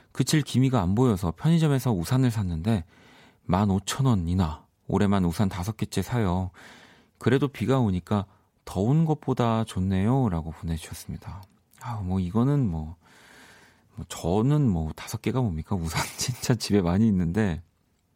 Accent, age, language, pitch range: native, 40-59, Korean, 90-125 Hz